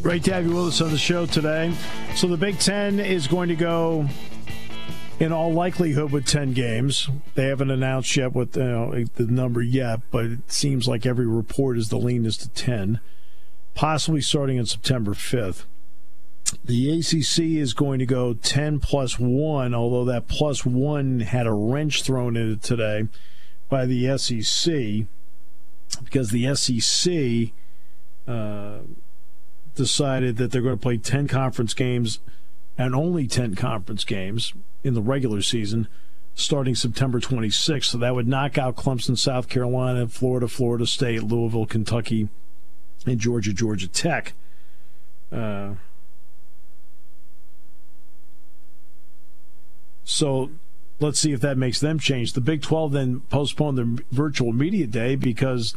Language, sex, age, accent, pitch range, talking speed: English, male, 50-69, American, 105-140 Hz, 145 wpm